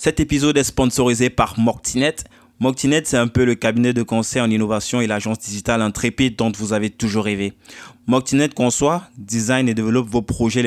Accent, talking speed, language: French, 180 wpm, French